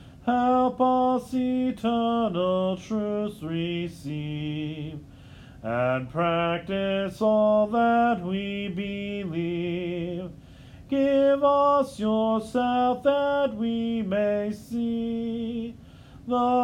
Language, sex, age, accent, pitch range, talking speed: English, male, 40-59, American, 180-235 Hz, 70 wpm